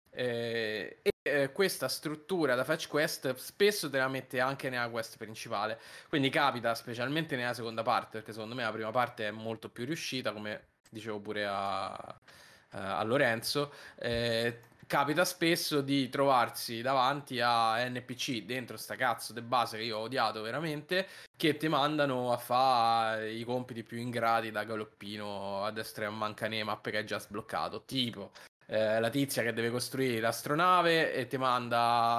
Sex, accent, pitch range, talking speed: male, native, 115-140 Hz, 160 wpm